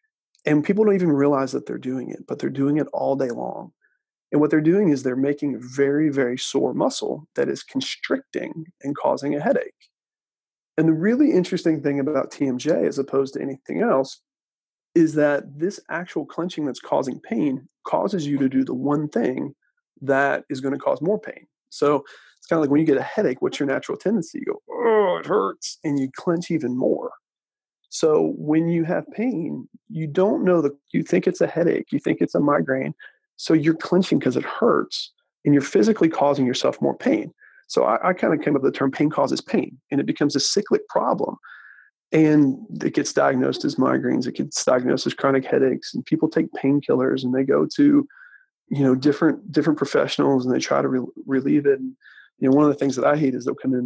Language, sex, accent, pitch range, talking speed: English, male, American, 135-205 Hz, 215 wpm